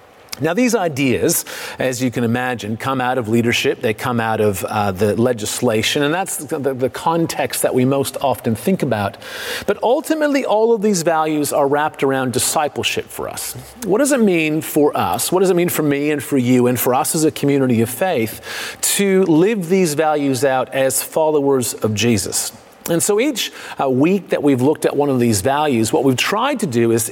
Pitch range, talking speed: 125-165 Hz, 200 wpm